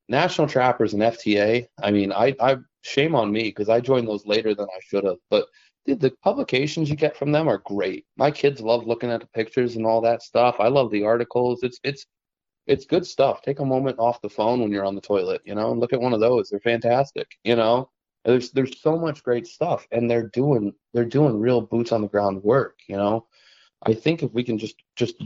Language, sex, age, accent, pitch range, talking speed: English, male, 30-49, American, 110-135 Hz, 235 wpm